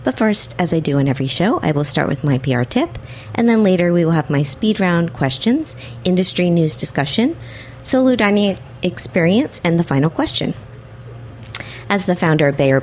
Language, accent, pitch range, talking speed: English, American, 130-190 Hz, 185 wpm